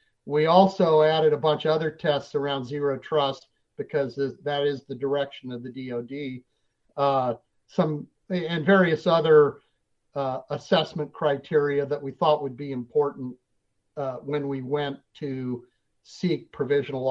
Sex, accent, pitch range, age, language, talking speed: male, American, 135-160 Hz, 50-69, English, 140 wpm